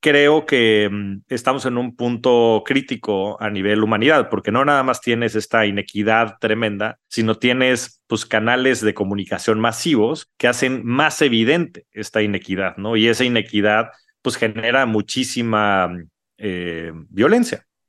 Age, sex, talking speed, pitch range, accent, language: 30-49, male, 140 wpm, 105-125 Hz, Mexican, Spanish